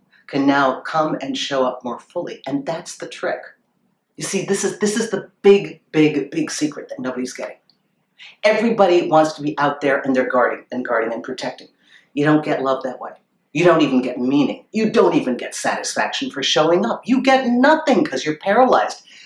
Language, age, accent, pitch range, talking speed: English, 40-59, American, 140-220 Hz, 200 wpm